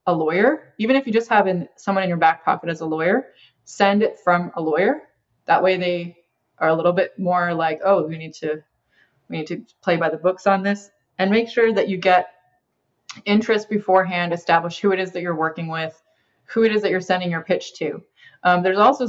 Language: English